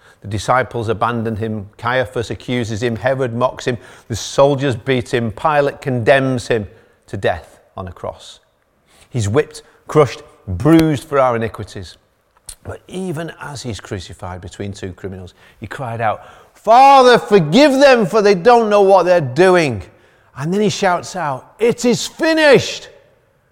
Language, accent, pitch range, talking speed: English, British, 110-180 Hz, 150 wpm